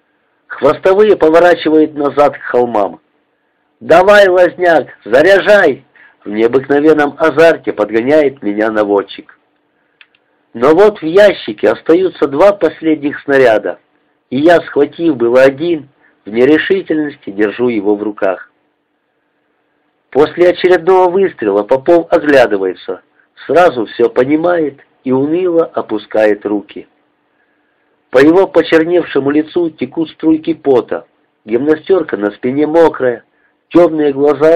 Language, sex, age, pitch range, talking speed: Russian, male, 50-69, 120-175 Hz, 100 wpm